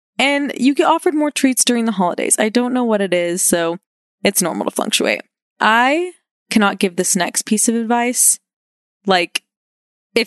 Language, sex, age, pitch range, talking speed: English, female, 20-39, 185-230 Hz, 175 wpm